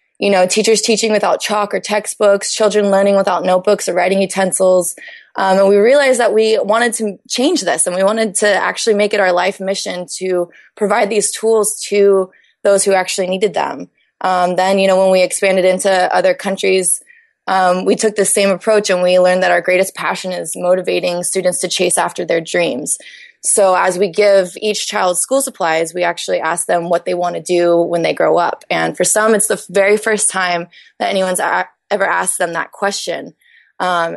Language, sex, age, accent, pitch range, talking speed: English, female, 20-39, American, 180-210 Hz, 200 wpm